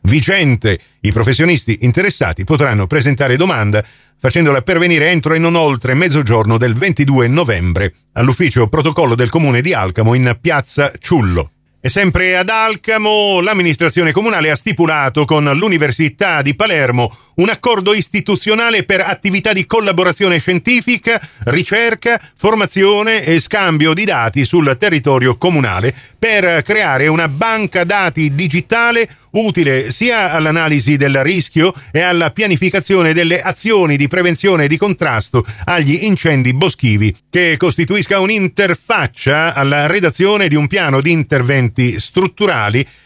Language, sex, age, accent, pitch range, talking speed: Italian, male, 40-59, native, 130-185 Hz, 125 wpm